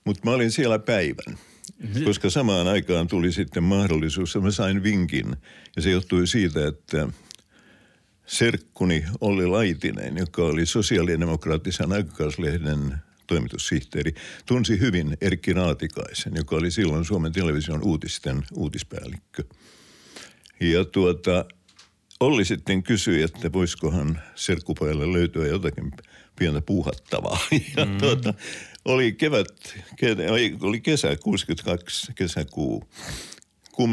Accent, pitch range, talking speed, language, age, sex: native, 80-100 Hz, 105 wpm, Finnish, 60-79, male